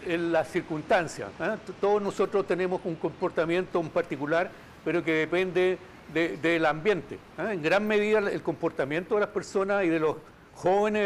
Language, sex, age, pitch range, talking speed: Spanish, male, 60-79, 160-195 Hz, 145 wpm